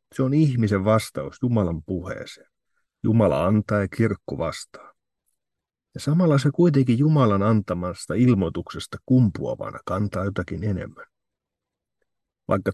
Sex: male